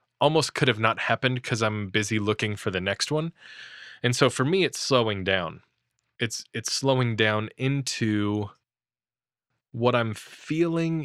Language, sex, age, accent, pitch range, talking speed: English, male, 20-39, American, 105-130 Hz, 150 wpm